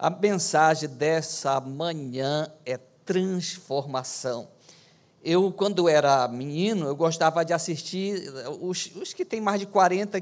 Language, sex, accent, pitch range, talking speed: Portuguese, male, Brazilian, 160-210 Hz, 125 wpm